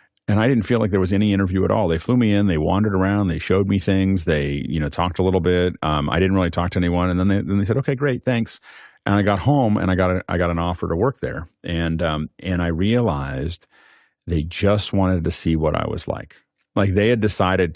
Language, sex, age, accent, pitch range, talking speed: English, male, 50-69, American, 80-95 Hz, 265 wpm